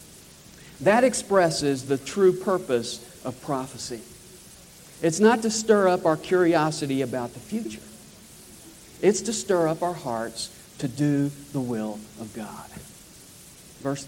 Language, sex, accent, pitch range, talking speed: English, male, American, 135-185 Hz, 130 wpm